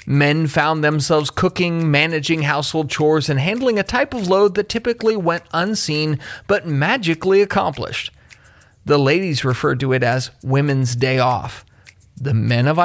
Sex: male